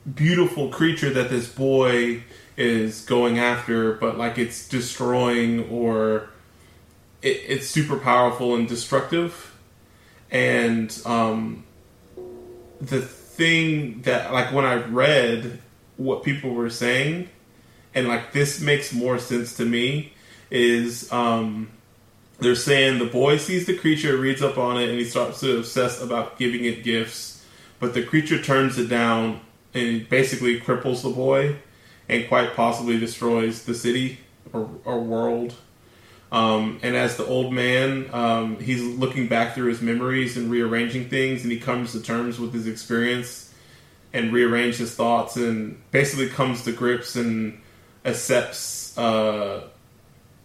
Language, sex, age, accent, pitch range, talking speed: English, male, 20-39, American, 115-130 Hz, 140 wpm